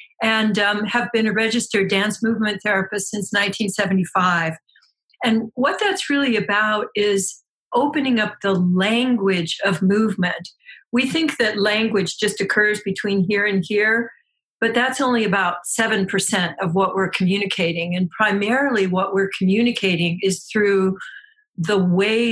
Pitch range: 195-230 Hz